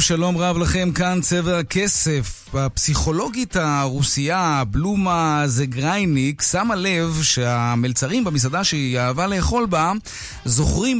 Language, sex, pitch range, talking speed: Hebrew, male, 135-190 Hz, 105 wpm